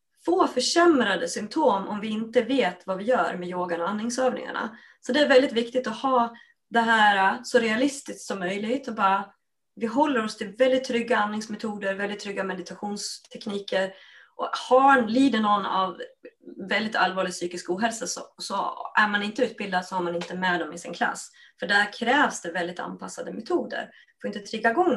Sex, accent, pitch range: female, native, 185-250 Hz